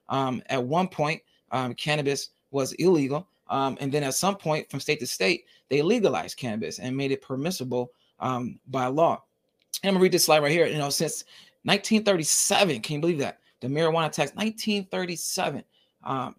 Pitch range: 135-165 Hz